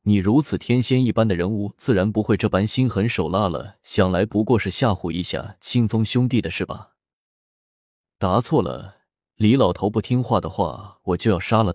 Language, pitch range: Chinese, 95-115 Hz